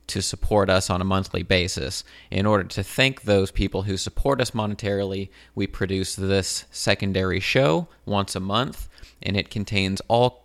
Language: English